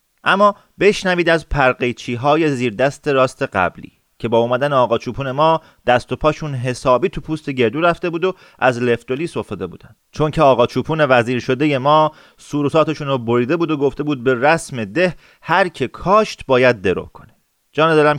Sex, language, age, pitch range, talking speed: male, Persian, 30-49, 125-155 Hz, 180 wpm